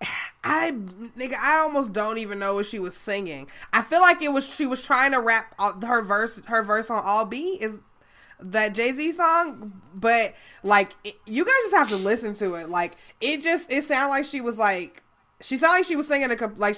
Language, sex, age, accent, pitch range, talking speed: English, female, 20-39, American, 190-245 Hz, 220 wpm